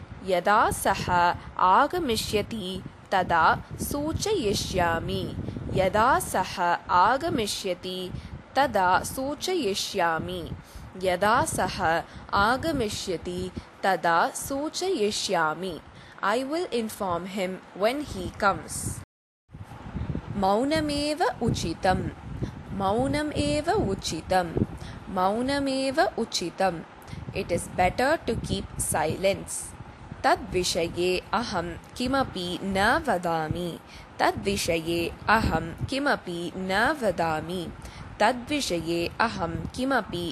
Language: Tamil